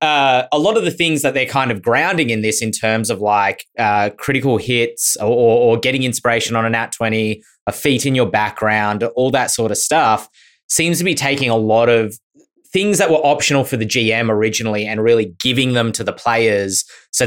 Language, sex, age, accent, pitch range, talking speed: English, male, 20-39, Australian, 105-130 Hz, 210 wpm